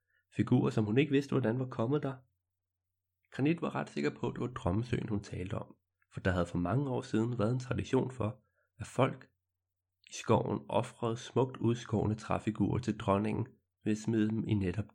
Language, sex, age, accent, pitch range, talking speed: Danish, male, 30-49, native, 90-110 Hz, 195 wpm